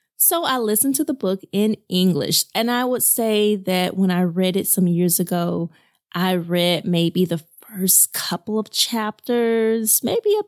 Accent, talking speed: American, 170 wpm